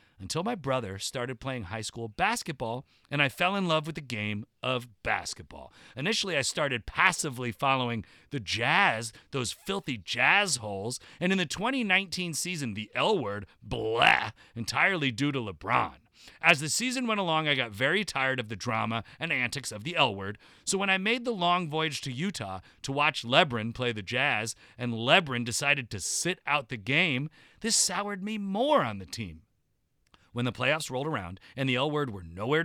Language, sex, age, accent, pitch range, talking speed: English, male, 40-59, American, 110-160 Hz, 185 wpm